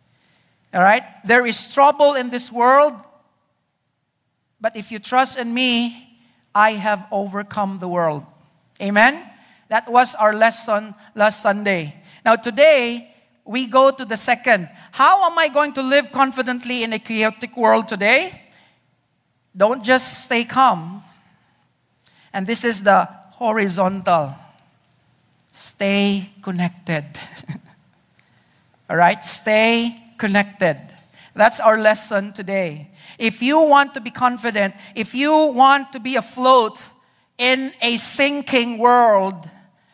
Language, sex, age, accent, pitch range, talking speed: English, male, 50-69, Filipino, 205-250 Hz, 120 wpm